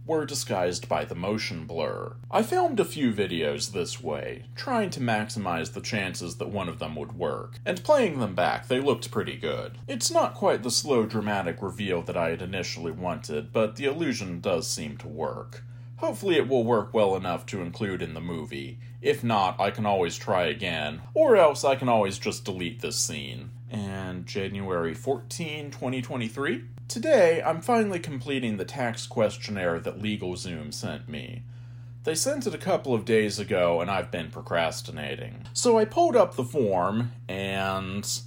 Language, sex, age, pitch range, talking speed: English, male, 30-49, 110-125 Hz, 175 wpm